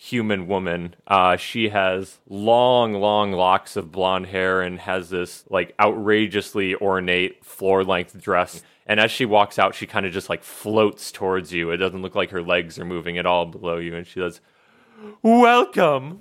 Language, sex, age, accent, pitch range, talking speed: English, male, 30-49, American, 100-165 Hz, 180 wpm